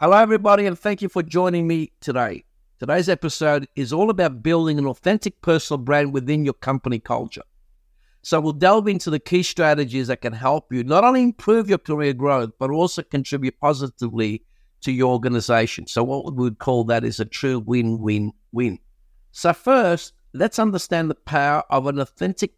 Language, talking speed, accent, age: English, 175 wpm, South African, 60-79